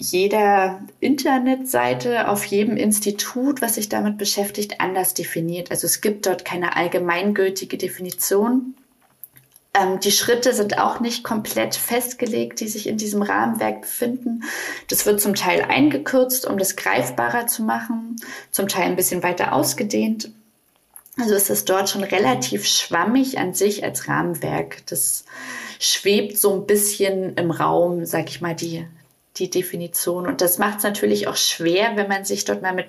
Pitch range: 170-215 Hz